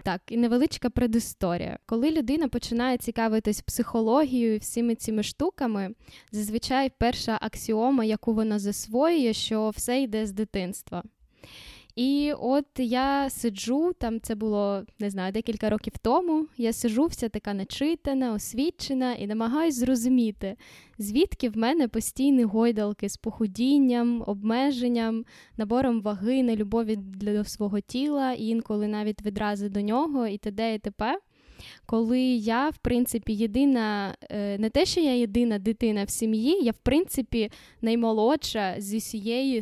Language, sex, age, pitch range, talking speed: Ukrainian, female, 10-29, 210-255 Hz, 135 wpm